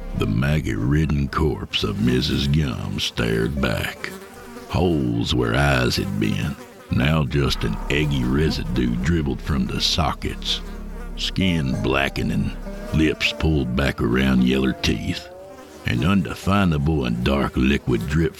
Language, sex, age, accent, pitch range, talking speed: English, male, 60-79, American, 65-85 Hz, 120 wpm